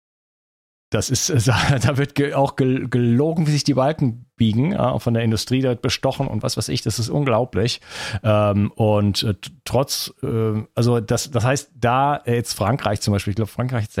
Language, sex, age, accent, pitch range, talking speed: German, male, 40-59, German, 110-130 Hz, 160 wpm